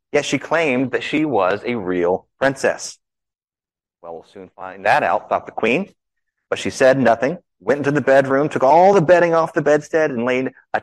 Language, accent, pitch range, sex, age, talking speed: English, American, 110-160 Hz, male, 30-49, 200 wpm